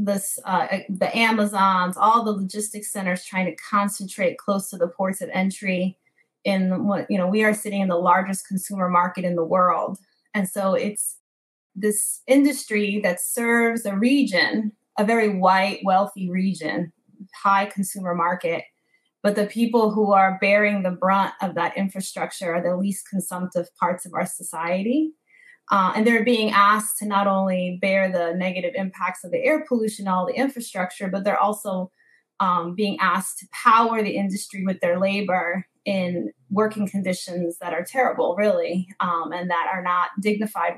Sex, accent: female, American